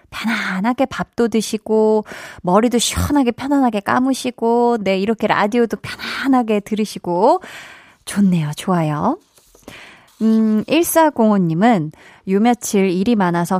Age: 20-39